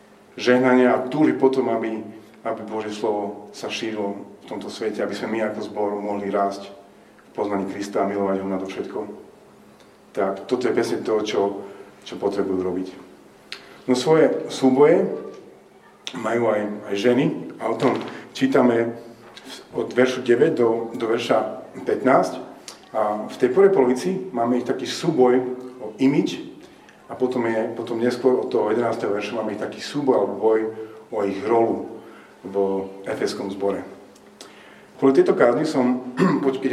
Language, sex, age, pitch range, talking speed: Slovak, male, 40-59, 105-130 Hz, 145 wpm